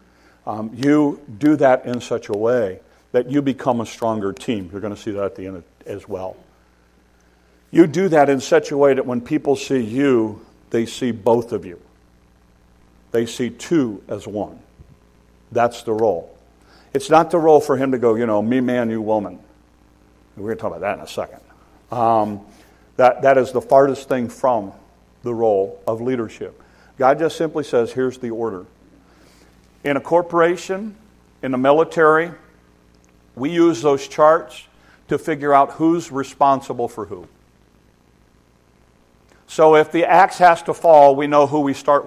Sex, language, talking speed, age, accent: male, English, 175 wpm, 50-69, American